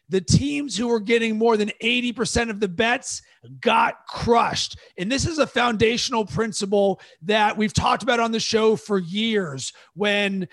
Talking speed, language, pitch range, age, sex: 165 wpm, English, 200-230 Hz, 30-49, male